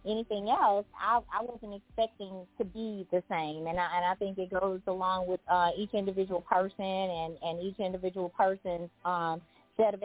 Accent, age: American, 20-39